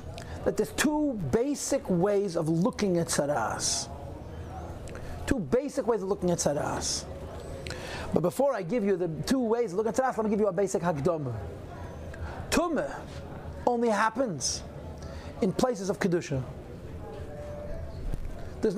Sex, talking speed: male, 135 wpm